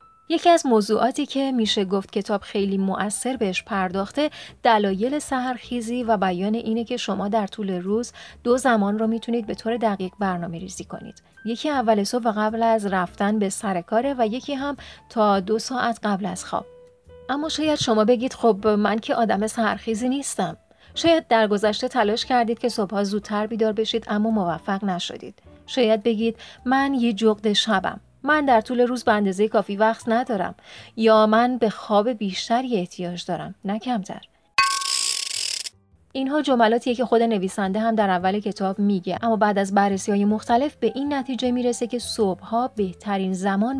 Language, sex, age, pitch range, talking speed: Persian, female, 30-49, 200-245 Hz, 160 wpm